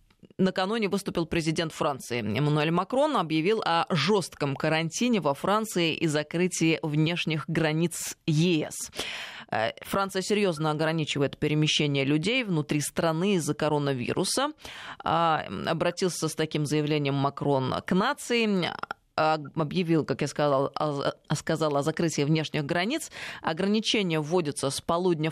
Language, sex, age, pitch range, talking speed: Russian, female, 20-39, 150-195 Hz, 115 wpm